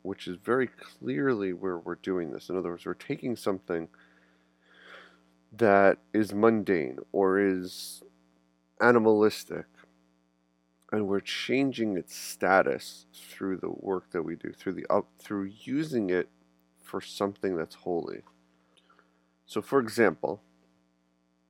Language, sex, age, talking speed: English, male, 30-49, 125 wpm